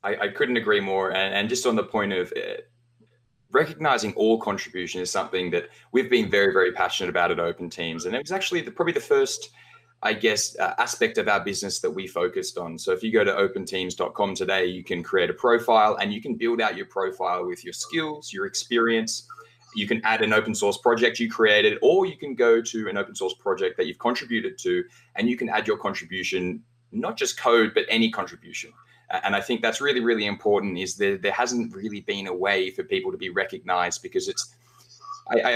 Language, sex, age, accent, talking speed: English, male, 20-39, Australian, 215 wpm